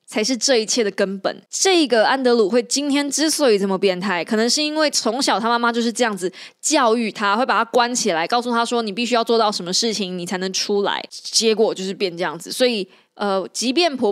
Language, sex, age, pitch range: Chinese, female, 20-39, 190-240 Hz